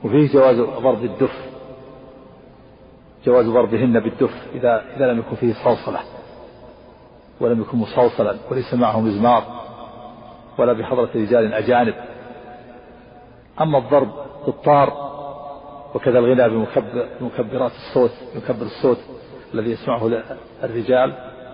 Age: 50-69